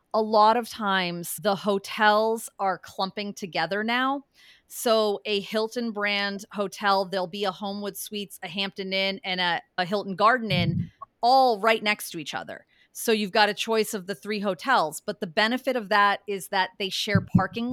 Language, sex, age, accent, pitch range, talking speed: English, female, 30-49, American, 185-220 Hz, 185 wpm